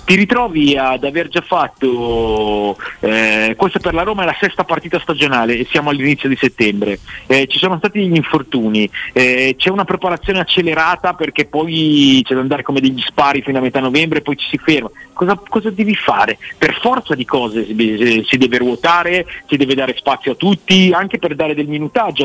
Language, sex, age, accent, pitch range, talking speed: Italian, male, 40-59, native, 120-165 Hz, 190 wpm